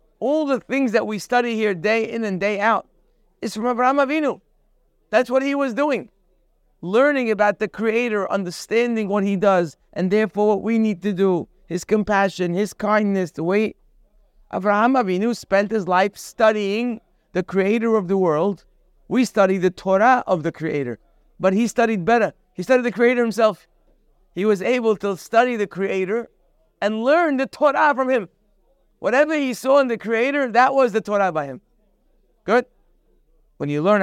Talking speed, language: 175 wpm, English